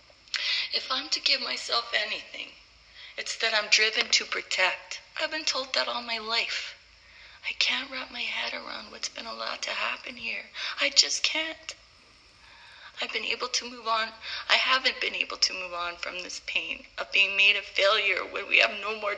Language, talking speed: English, 190 wpm